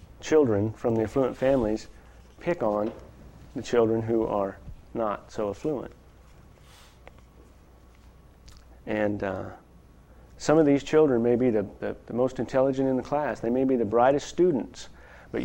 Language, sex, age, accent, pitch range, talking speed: English, male, 40-59, American, 105-130 Hz, 145 wpm